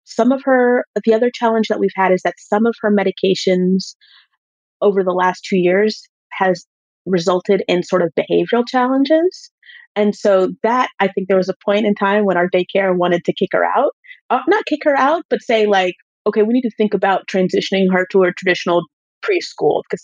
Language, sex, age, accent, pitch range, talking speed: English, female, 30-49, American, 185-240 Hz, 200 wpm